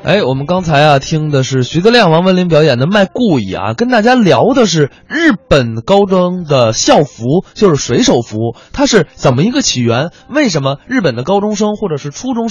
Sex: male